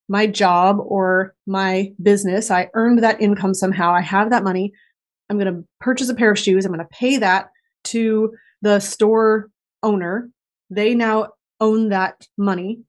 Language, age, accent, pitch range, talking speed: English, 20-39, American, 195-230 Hz, 170 wpm